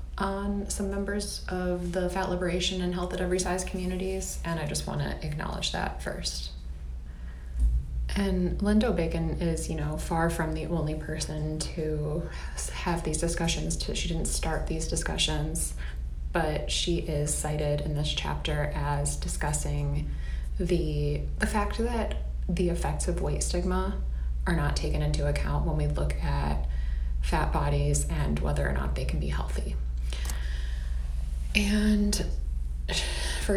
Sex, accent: female, American